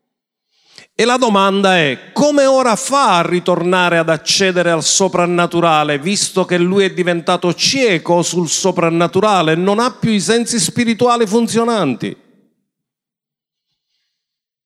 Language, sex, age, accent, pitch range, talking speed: Italian, male, 50-69, native, 165-215 Hz, 115 wpm